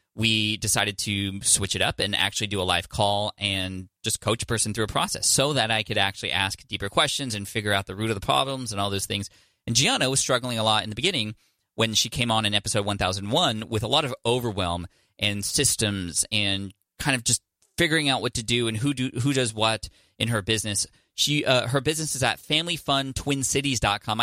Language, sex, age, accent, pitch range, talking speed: English, male, 20-39, American, 100-130 Hz, 220 wpm